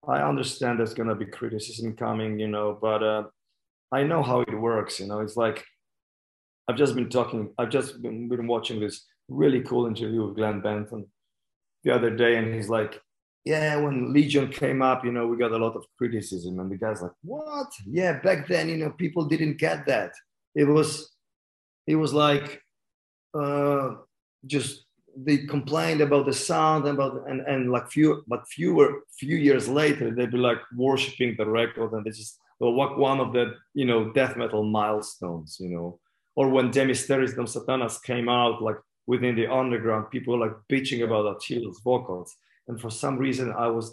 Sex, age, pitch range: male, 30-49, 110-140 Hz